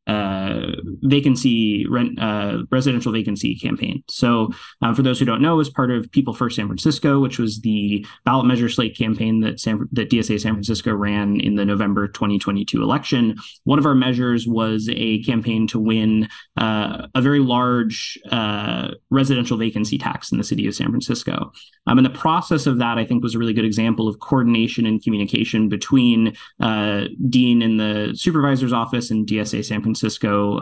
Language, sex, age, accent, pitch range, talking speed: English, male, 20-39, American, 110-130 Hz, 180 wpm